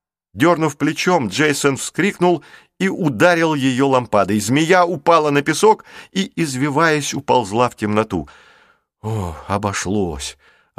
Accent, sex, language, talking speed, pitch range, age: native, male, Russian, 110 wpm, 105-145 Hz, 50-69